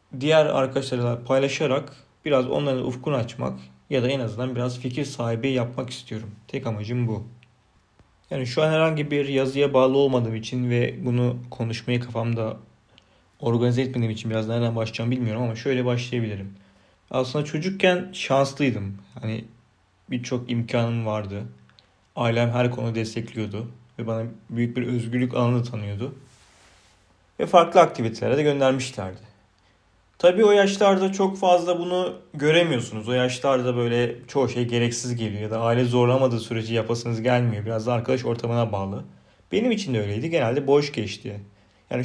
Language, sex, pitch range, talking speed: Turkish, male, 105-130 Hz, 140 wpm